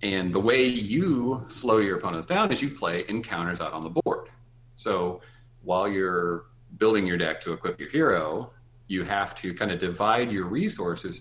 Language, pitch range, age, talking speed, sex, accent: English, 90-120 Hz, 40-59, 180 wpm, male, American